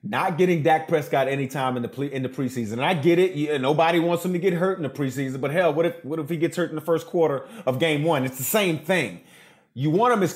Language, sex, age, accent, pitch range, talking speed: English, male, 30-49, American, 150-205 Hz, 285 wpm